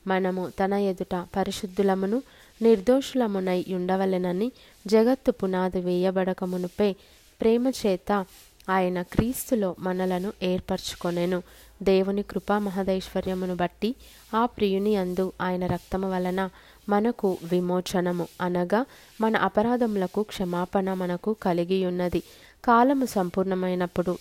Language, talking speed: Telugu, 85 wpm